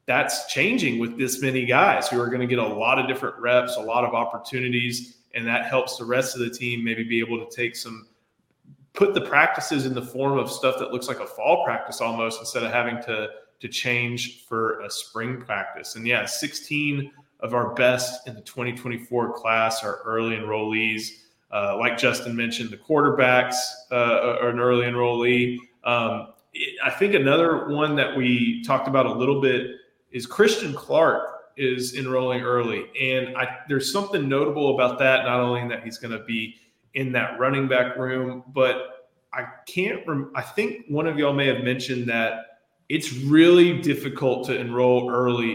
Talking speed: 180 wpm